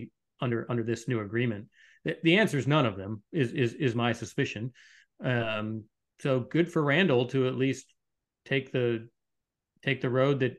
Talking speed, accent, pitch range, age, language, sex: 175 wpm, American, 120-140 Hz, 40-59, English, male